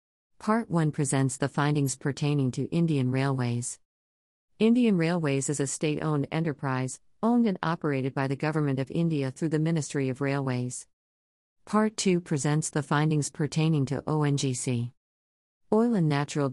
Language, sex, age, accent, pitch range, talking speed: English, female, 50-69, American, 130-165 Hz, 140 wpm